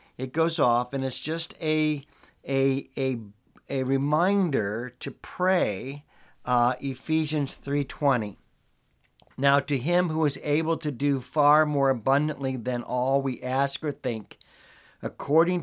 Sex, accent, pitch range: male, American, 115-145 Hz